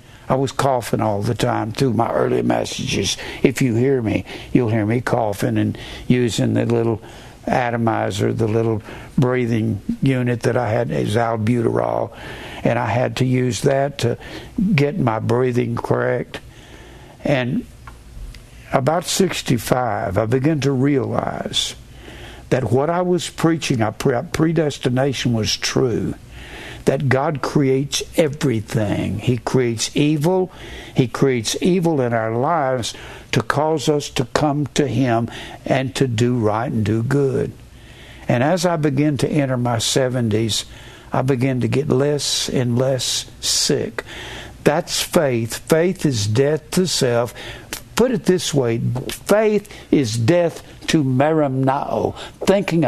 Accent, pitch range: American, 115-145 Hz